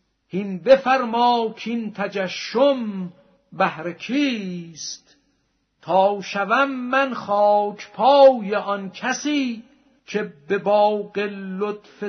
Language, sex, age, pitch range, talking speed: Persian, male, 50-69, 195-250 Hz, 85 wpm